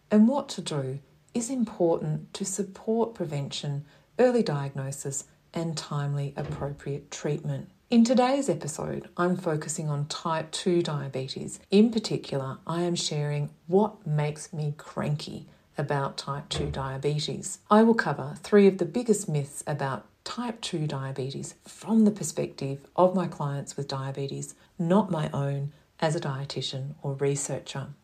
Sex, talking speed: female, 140 wpm